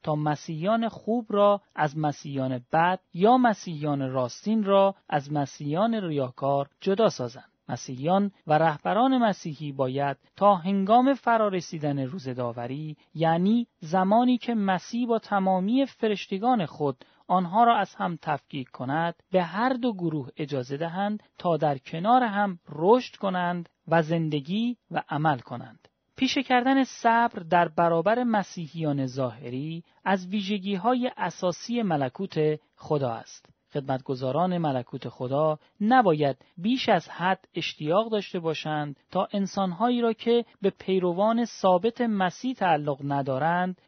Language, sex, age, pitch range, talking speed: Persian, male, 40-59, 150-215 Hz, 125 wpm